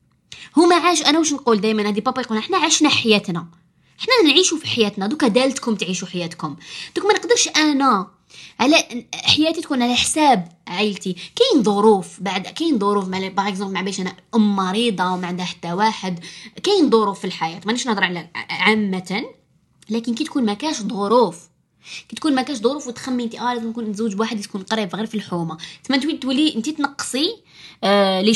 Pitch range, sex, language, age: 185-240 Hz, female, Arabic, 20-39